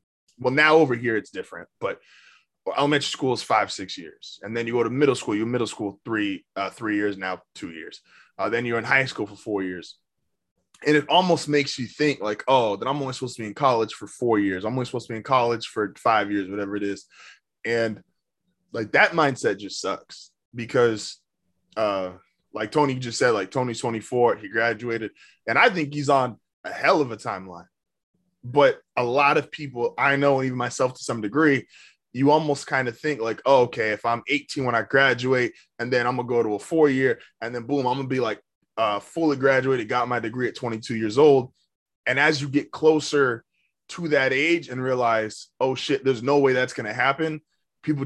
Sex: male